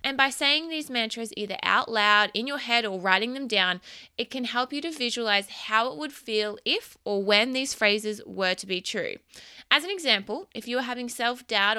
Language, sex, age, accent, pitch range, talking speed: English, female, 20-39, Australian, 205-250 Hz, 215 wpm